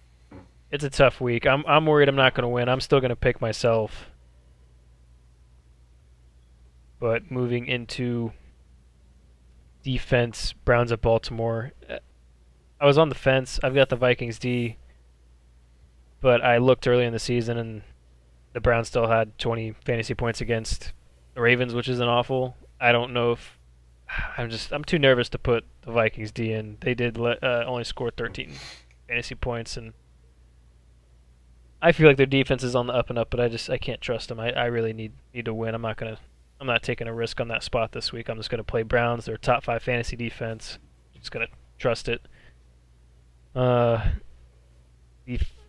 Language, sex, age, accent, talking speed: English, male, 20-39, American, 180 wpm